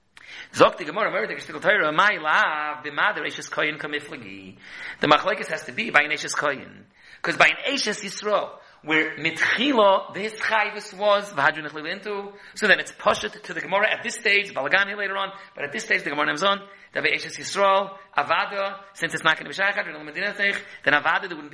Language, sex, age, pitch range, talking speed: English, male, 30-49, 155-205 Hz, 165 wpm